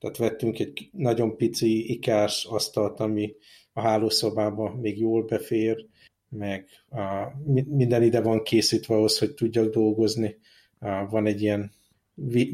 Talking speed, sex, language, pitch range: 130 wpm, male, Hungarian, 105-115 Hz